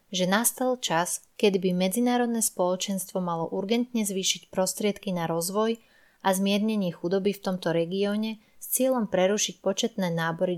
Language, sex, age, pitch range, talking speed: Slovak, female, 20-39, 180-215 Hz, 135 wpm